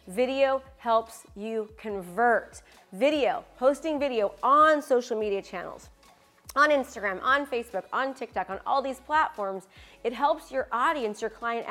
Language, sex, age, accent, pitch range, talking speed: English, female, 30-49, American, 205-265 Hz, 140 wpm